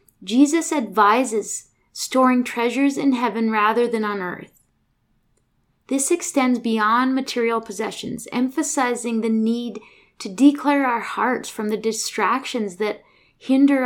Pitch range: 215-255 Hz